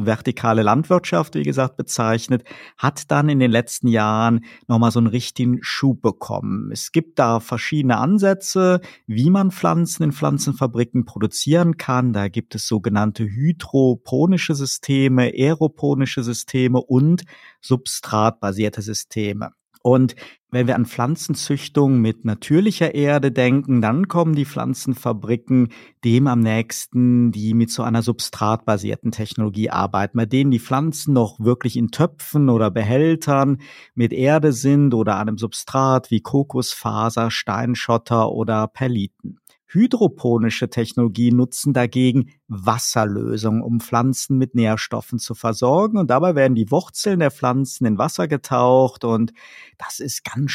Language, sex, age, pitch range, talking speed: German, male, 50-69, 115-140 Hz, 130 wpm